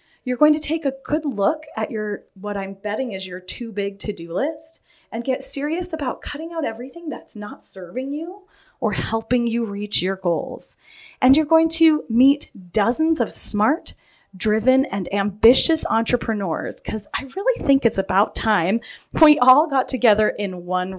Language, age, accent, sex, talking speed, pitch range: English, 30-49, American, female, 170 wpm, 205-280 Hz